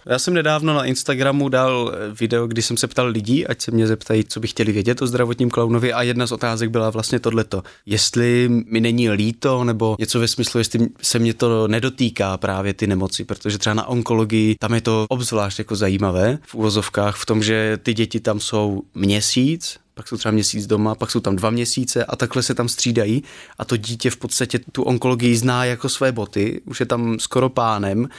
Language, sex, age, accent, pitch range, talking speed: Czech, male, 20-39, native, 110-130 Hz, 205 wpm